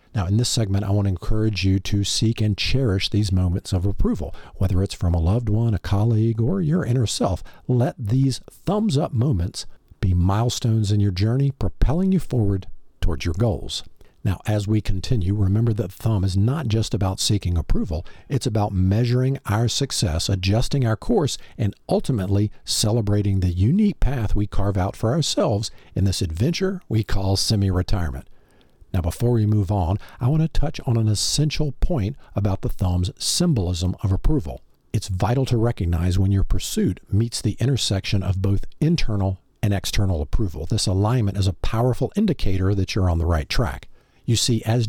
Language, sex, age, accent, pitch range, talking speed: English, male, 50-69, American, 95-120 Hz, 180 wpm